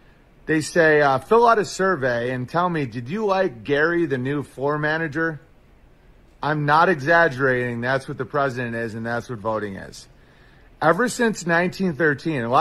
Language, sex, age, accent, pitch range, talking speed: English, male, 30-49, American, 125-170 Hz, 160 wpm